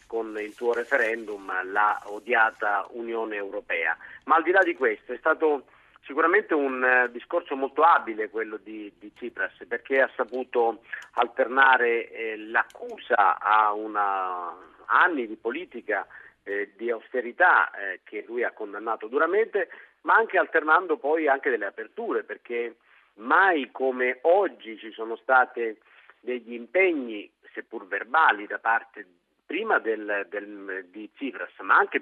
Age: 50-69